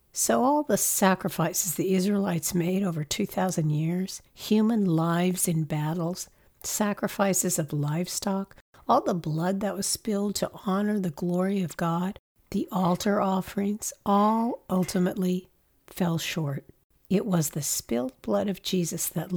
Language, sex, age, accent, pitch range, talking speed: English, female, 60-79, American, 165-205 Hz, 135 wpm